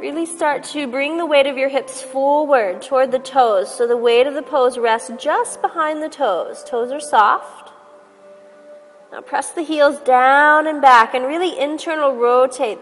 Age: 30-49